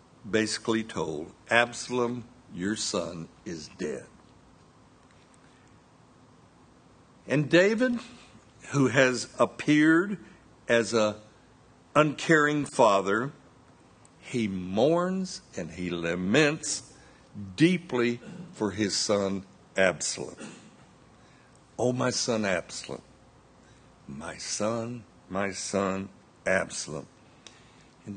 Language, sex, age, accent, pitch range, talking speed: English, male, 60-79, American, 105-140 Hz, 75 wpm